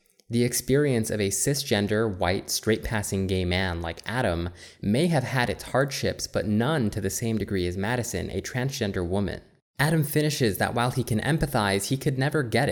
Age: 20-39